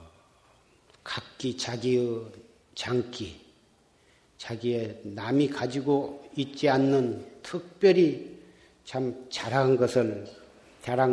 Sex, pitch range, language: male, 115-135 Hz, Korean